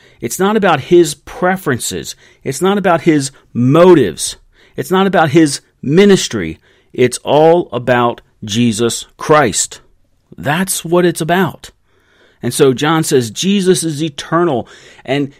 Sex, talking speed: male, 125 wpm